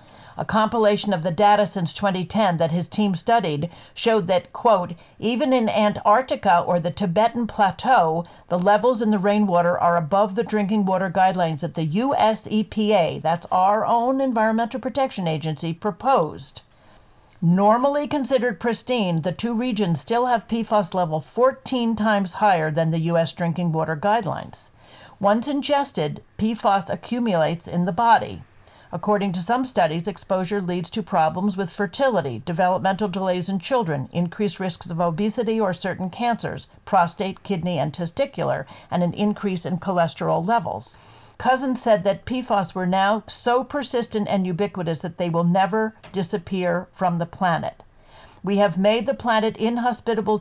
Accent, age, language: American, 50-69, English